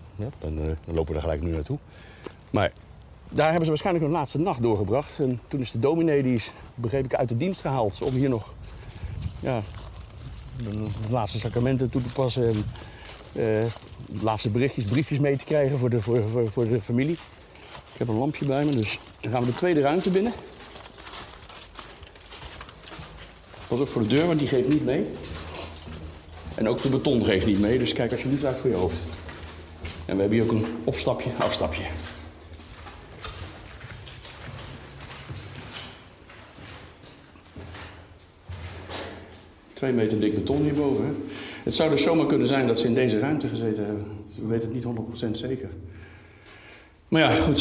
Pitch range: 90-125 Hz